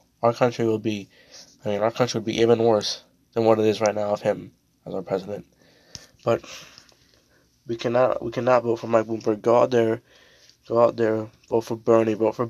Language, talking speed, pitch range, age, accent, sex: English, 205 wpm, 105-115 Hz, 20-39, American, male